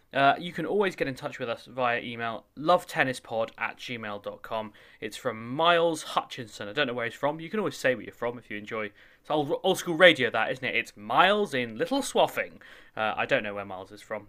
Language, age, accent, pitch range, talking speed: English, 20-39, British, 110-150 Hz, 230 wpm